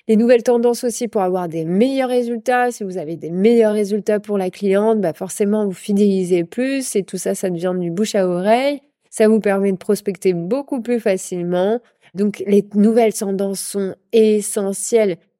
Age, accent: 20-39, French